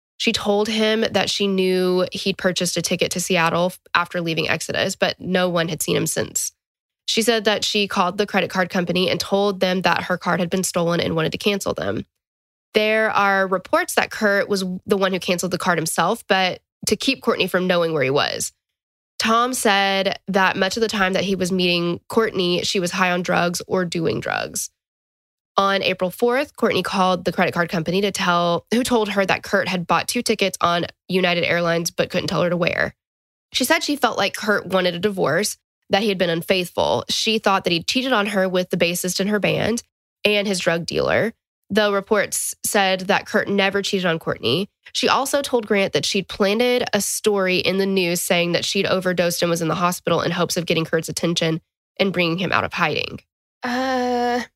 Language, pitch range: English, 175-205 Hz